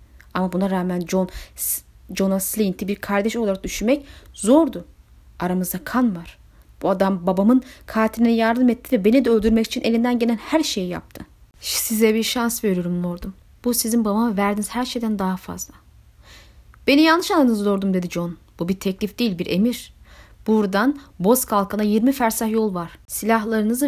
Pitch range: 185-240 Hz